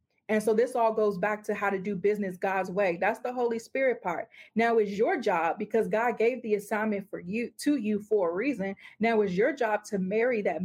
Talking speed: 230 wpm